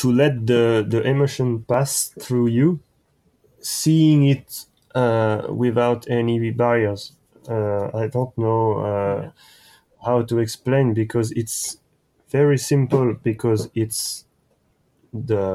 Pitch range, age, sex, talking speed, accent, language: 110-130 Hz, 30-49, male, 110 wpm, French, English